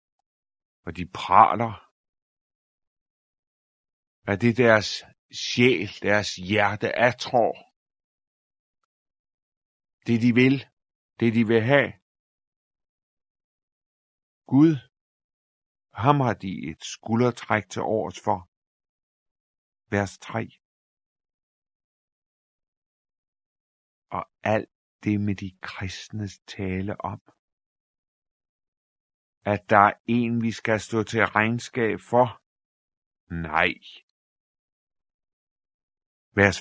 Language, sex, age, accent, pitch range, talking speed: Danish, male, 50-69, native, 90-110 Hz, 80 wpm